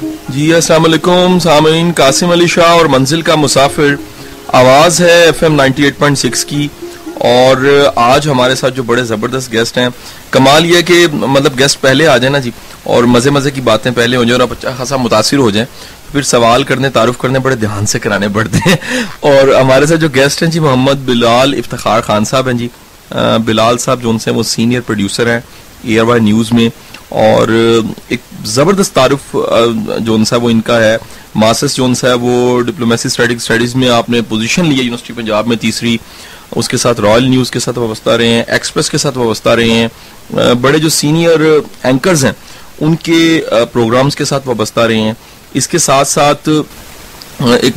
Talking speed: 155 wpm